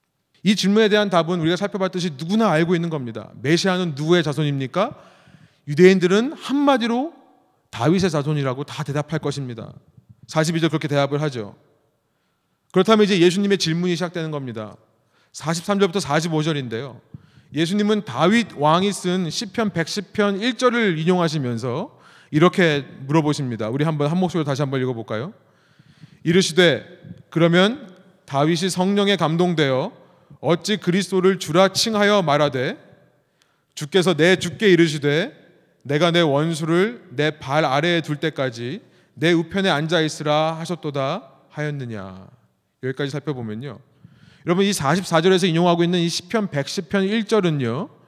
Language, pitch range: Korean, 145-190 Hz